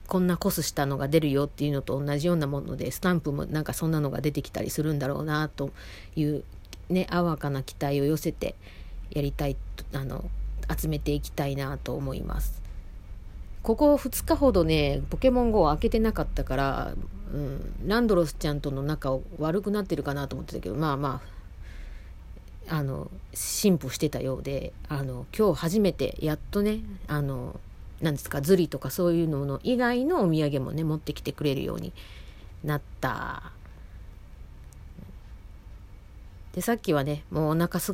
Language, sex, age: Japanese, female, 40-59